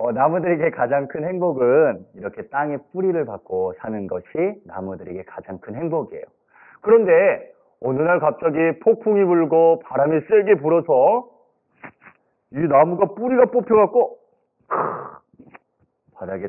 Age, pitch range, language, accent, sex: 40-59, 145-230 Hz, Korean, native, male